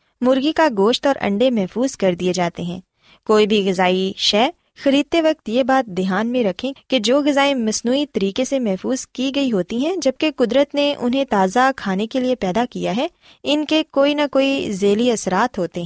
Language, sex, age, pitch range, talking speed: Urdu, female, 20-39, 195-270 Hz, 195 wpm